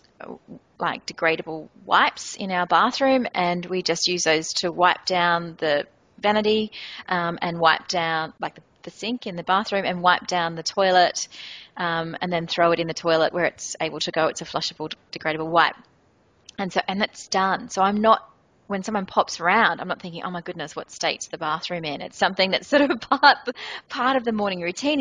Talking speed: 200 wpm